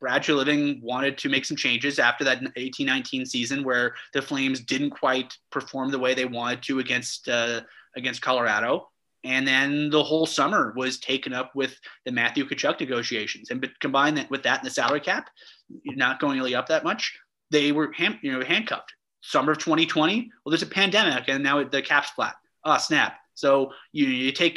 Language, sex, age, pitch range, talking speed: English, male, 30-49, 130-160 Hz, 190 wpm